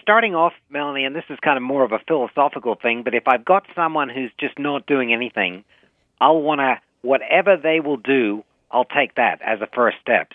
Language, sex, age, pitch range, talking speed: English, male, 40-59, 110-140 Hz, 210 wpm